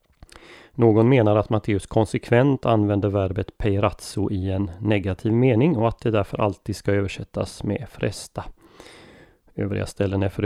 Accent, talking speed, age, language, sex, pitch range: native, 145 wpm, 30-49, Swedish, male, 100-115 Hz